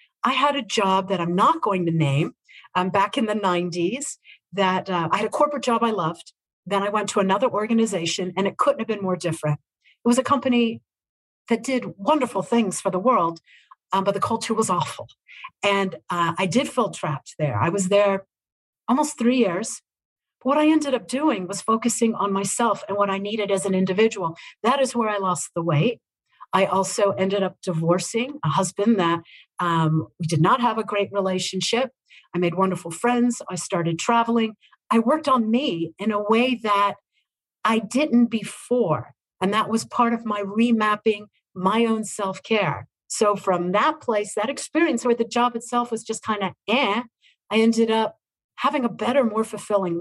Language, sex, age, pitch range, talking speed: English, female, 50-69, 185-245 Hz, 190 wpm